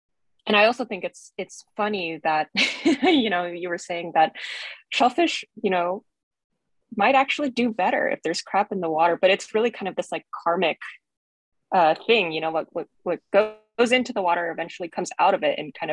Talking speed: 200 wpm